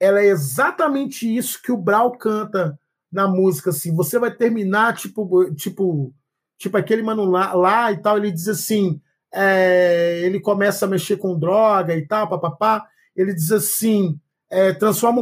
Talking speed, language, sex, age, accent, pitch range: 170 wpm, Portuguese, male, 40-59, Brazilian, 185-280 Hz